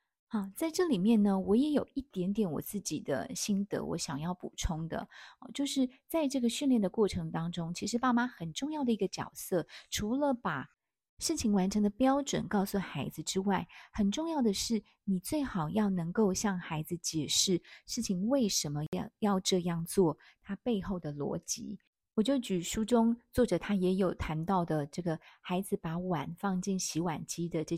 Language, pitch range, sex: Chinese, 175-225 Hz, female